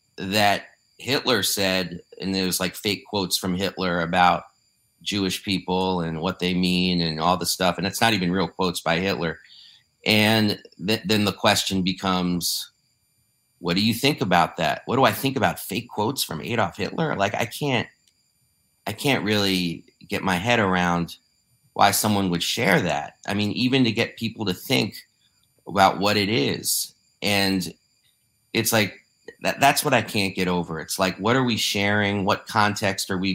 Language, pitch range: English, 90-105 Hz